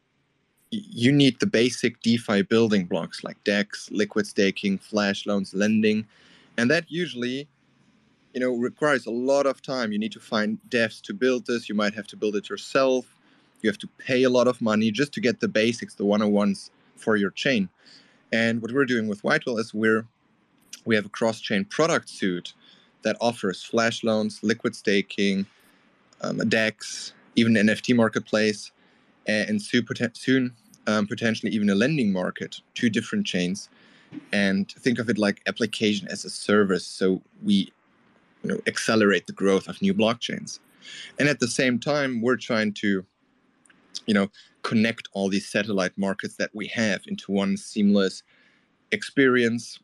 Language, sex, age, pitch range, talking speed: English, male, 20-39, 105-130 Hz, 165 wpm